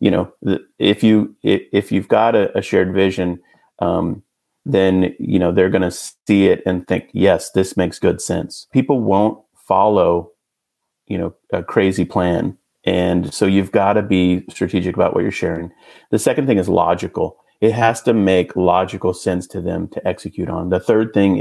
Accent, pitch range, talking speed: American, 90-105 Hz, 180 wpm